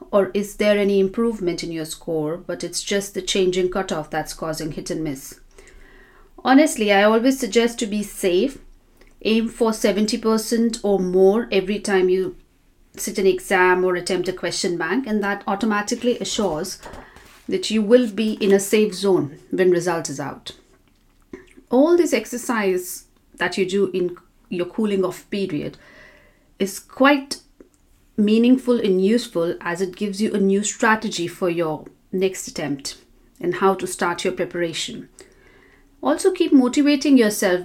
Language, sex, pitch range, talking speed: English, female, 180-230 Hz, 150 wpm